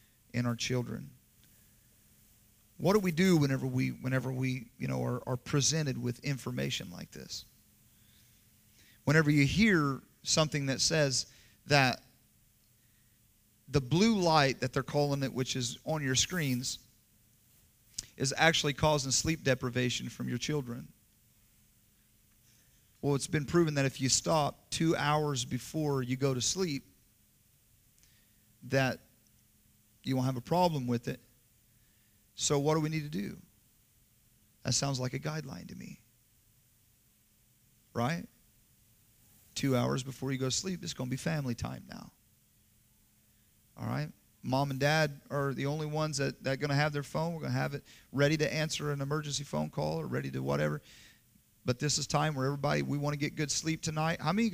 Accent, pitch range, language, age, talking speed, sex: American, 115-150 Hz, English, 40-59, 165 wpm, male